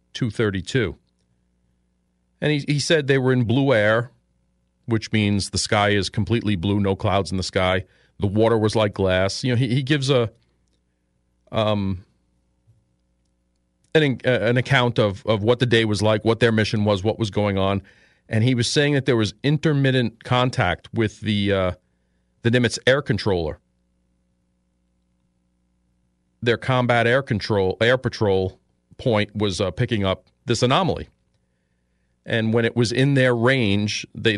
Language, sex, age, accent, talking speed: English, male, 40-59, American, 155 wpm